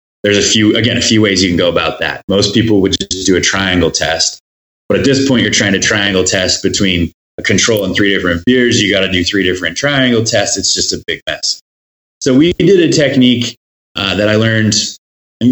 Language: English